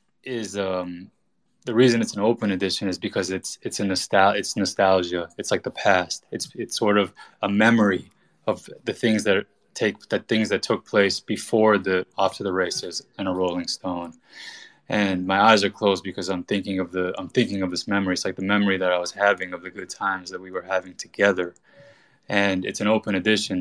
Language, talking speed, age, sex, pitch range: English, 210 wpm, 20-39, male, 90-100 Hz